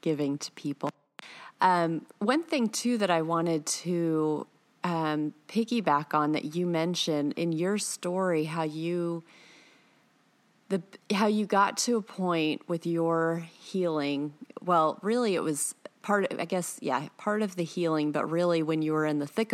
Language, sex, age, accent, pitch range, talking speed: English, female, 30-49, American, 155-200 Hz, 165 wpm